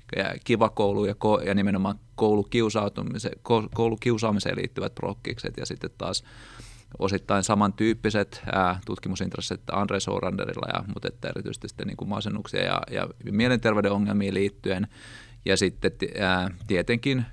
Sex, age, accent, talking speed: male, 30-49, native, 120 wpm